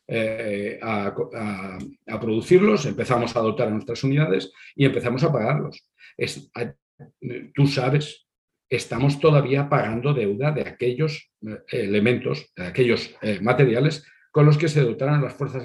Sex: male